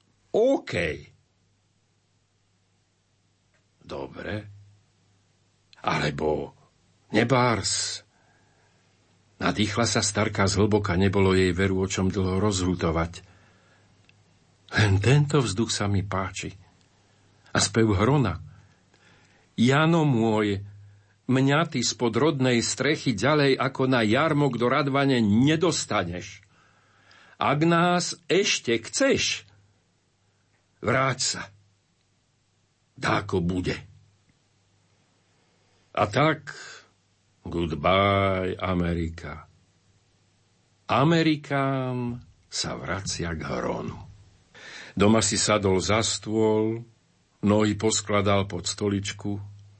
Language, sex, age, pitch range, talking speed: Slovak, male, 50-69, 95-120 Hz, 75 wpm